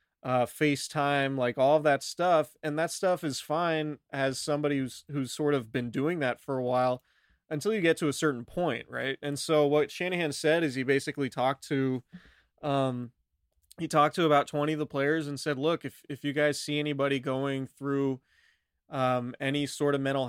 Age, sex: 20-39, male